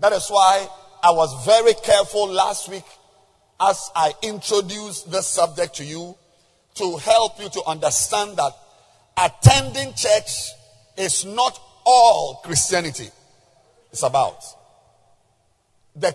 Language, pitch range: English, 125-205 Hz